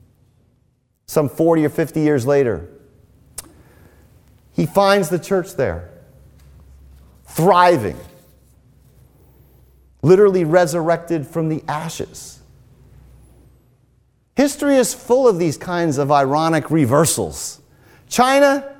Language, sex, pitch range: English, male, 140-200 Hz